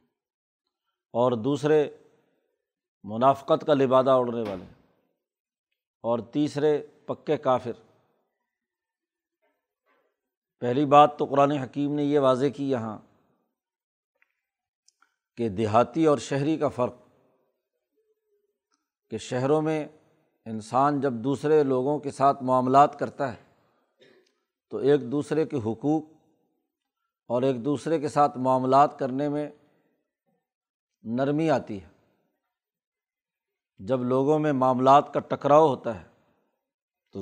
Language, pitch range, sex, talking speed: Urdu, 130-150 Hz, male, 105 wpm